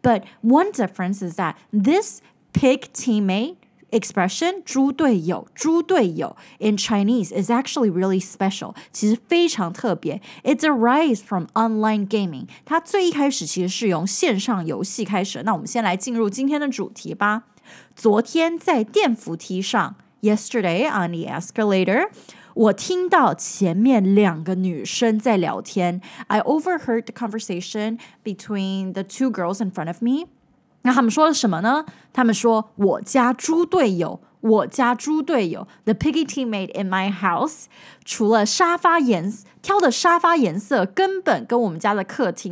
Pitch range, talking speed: 190-260 Hz, 65 wpm